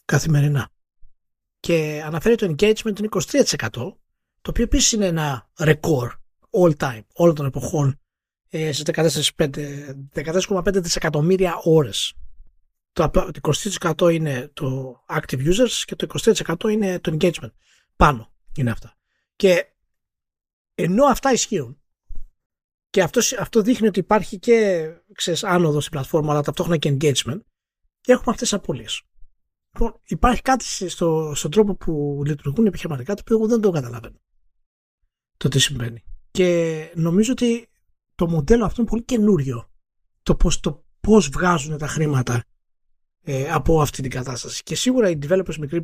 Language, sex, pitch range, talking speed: Greek, male, 140-185 Hz, 135 wpm